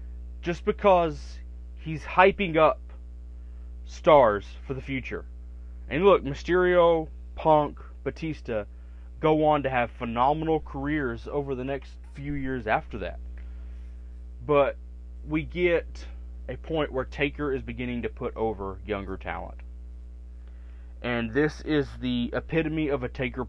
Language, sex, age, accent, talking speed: English, male, 30-49, American, 125 wpm